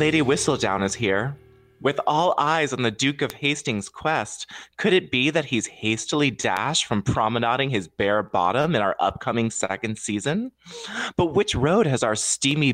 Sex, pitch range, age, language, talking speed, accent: male, 110-150 Hz, 20-39, English, 170 wpm, American